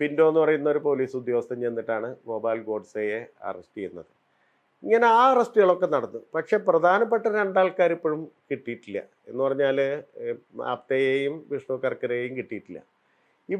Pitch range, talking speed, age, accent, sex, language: 130-185 Hz, 65 wpm, 30-49, Indian, male, English